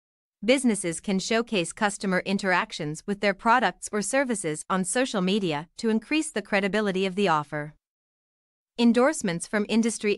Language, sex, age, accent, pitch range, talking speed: English, female, 30-49, American, 170-225 Hz, 135 wpm